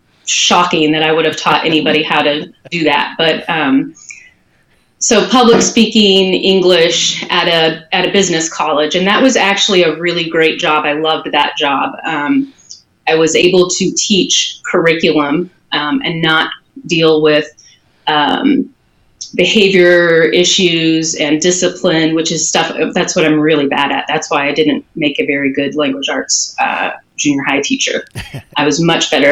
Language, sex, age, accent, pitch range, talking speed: English, female, 30-49, American, 155-190 Hz, 160 wpm